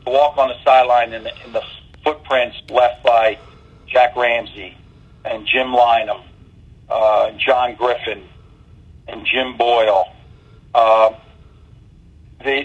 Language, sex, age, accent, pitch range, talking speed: English, male, 50-69, American, 115-140 Hz, 115 wpm